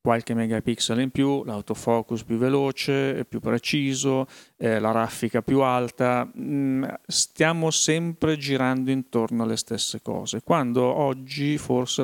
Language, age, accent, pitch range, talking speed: Italian, 40-59, native, 115-135 Hz, 125 wpm